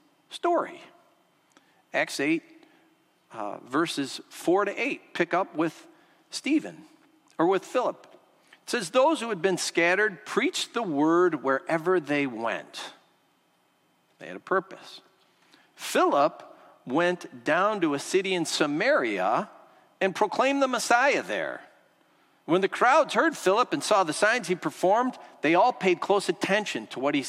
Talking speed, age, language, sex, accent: 140 wpm, 50-69, English, male, American